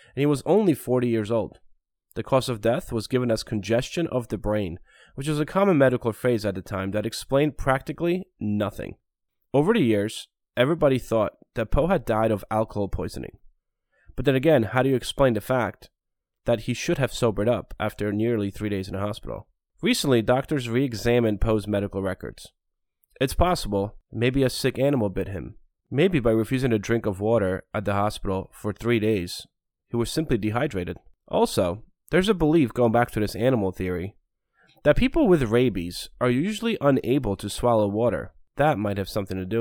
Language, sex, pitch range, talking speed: English, male, 105-130 Hz, 185 wpm